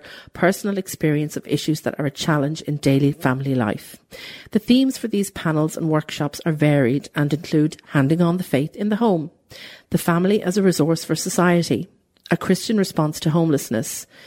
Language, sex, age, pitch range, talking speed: English, female, 40-59, 150-185 Hz, 175 wpm